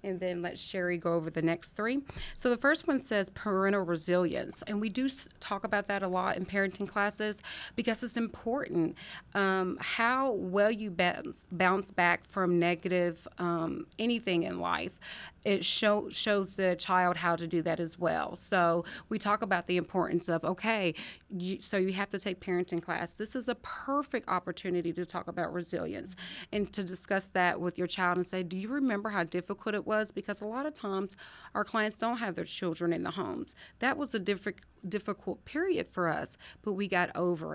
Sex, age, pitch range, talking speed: female, 30-49, 175-210 Hz, 195 wpm